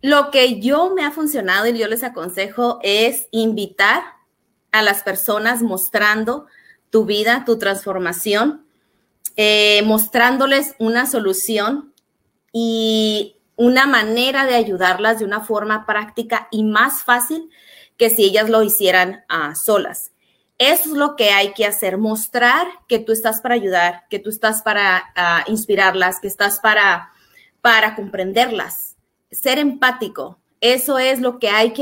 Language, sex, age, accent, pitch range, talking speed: Spanish, female, 30-49, Mexican, 205-240 Hz, 140 wpm